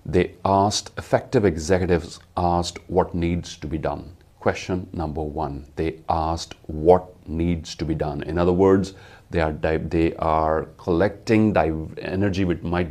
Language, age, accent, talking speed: English, 40-59, Indian, 150 wpm